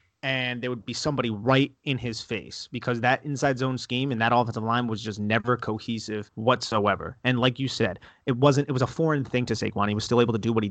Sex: male